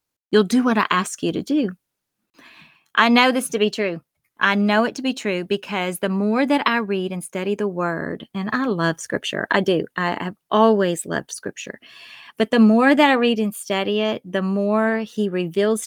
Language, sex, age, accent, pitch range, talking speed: English, female, 30-49, American, 185-230 Hz, 205 wpm